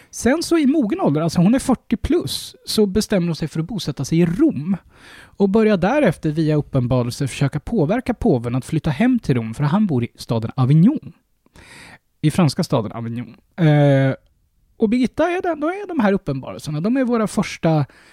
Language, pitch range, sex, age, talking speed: Swedish, 130-205 Hz, male, 20-39, 190 wpm